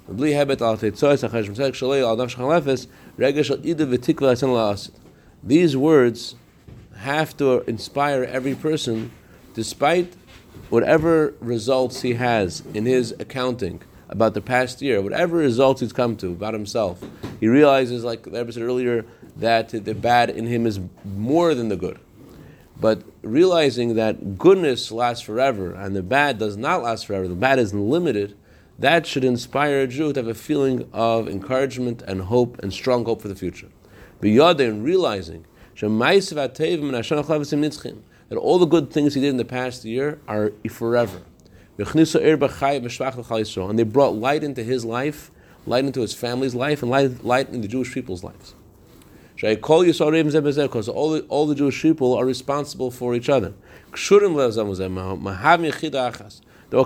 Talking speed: 135 wpm